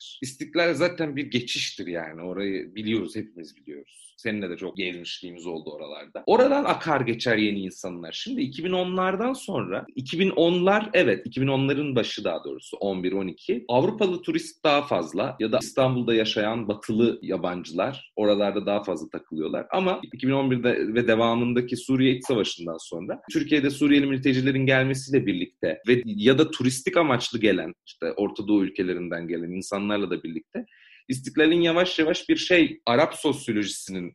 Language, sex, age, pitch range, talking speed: Turkish, male, 40-59, 110-165 Hz, 135 wpm